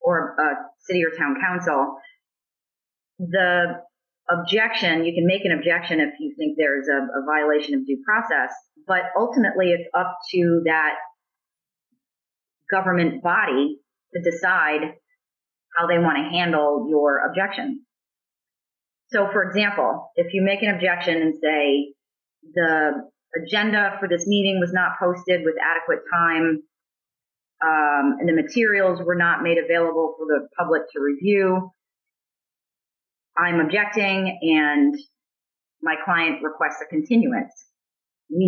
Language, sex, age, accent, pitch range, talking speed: English, female, 30-49, American, 160-210 Hz, 130 wpm